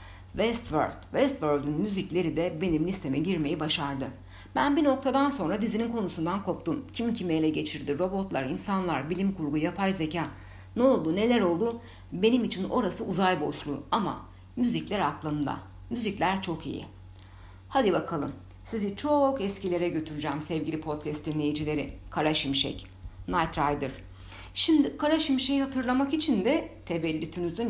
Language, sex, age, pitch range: Turkish, female, 60-79, 140-205 Hz